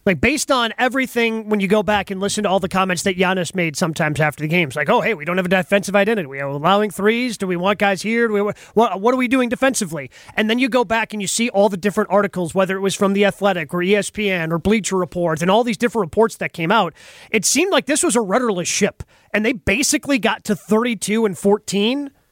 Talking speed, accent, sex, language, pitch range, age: 255 wpm, American, male, English, 190-235 Hz, 30-49